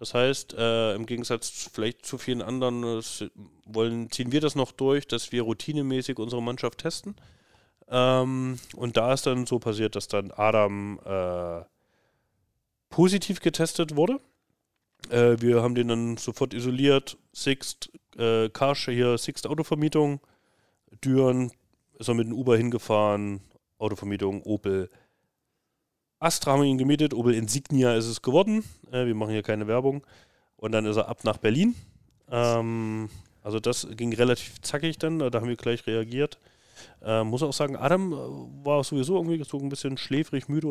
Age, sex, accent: 30-49, male, German